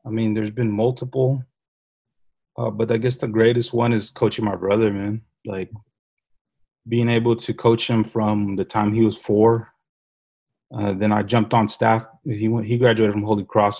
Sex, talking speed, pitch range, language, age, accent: male, 185 wpm, 105-115 Hz, English, 20-39, American